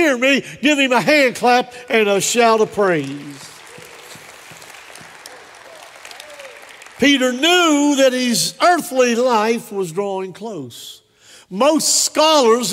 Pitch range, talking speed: 210-280 Hz, 110 wpm